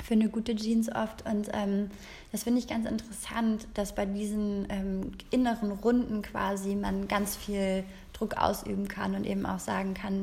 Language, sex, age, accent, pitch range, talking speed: German, female, 20-39, German, 195-225 Hz, 175 wpm